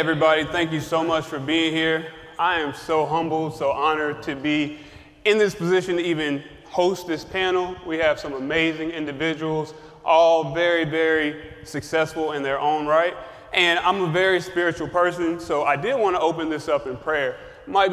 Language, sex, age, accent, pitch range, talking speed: English, male, 30-49, American, 150-175 Hz, 180 wpm